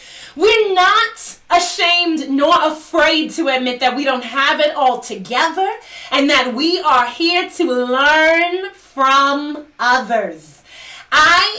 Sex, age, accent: female, 30-49, American